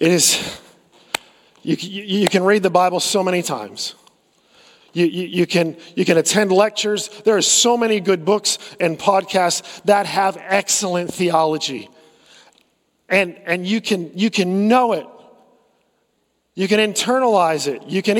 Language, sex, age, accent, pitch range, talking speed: English, male, 40-59, American, 175-230 Hz, 135 wpm